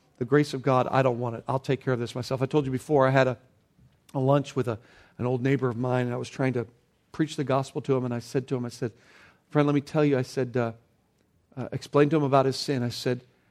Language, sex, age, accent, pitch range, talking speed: English, male, 50-69, American, 125-155 Hz, 285 wpm